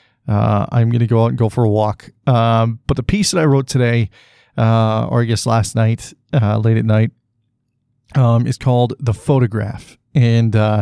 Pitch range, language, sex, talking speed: 110-130 Hz, English, male, 195 wpm